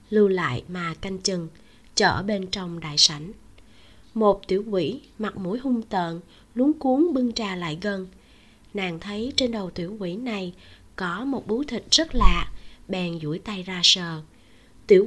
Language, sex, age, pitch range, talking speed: Vietnamese, female, 20-39, 185-260 Hz, 165 wpm